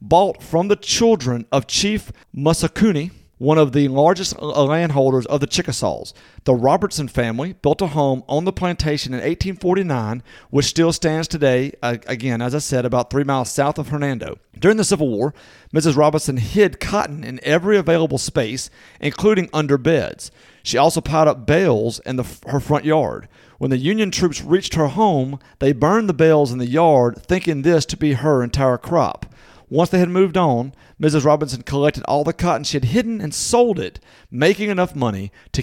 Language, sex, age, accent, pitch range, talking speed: English, male, 40-59, American, 130-170 Hz, 180 wpm